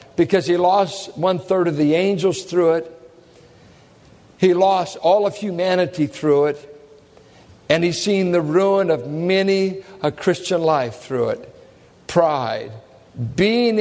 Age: 60-79